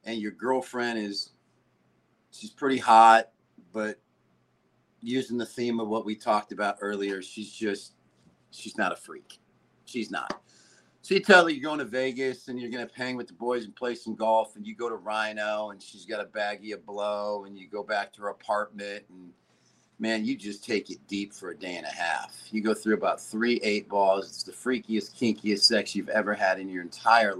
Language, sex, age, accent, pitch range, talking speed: English, male, 40-59, American, 95-120 Hz, 210 wpm